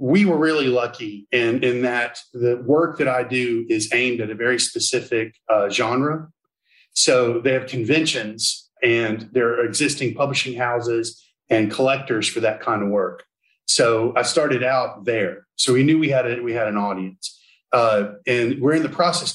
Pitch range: 115-135 Hz